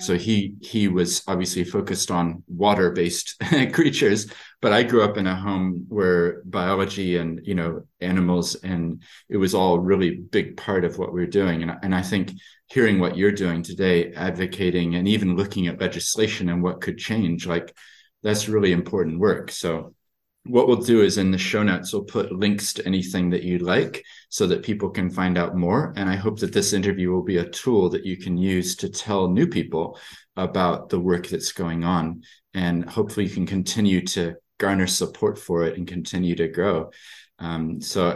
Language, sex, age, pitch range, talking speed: English, male, 30-49, 90-105 Hz, 195 wpm